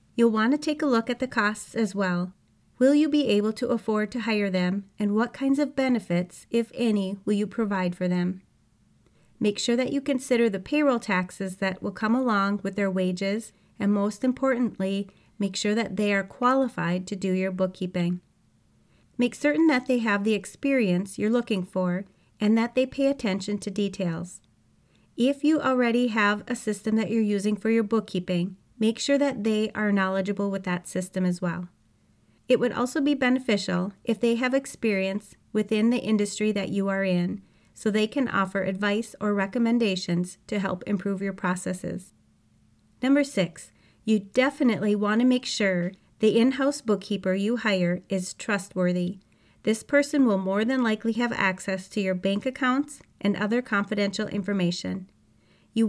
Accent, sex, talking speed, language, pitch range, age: American, female, 170 wpm, English, 190-240 Hz, 30-49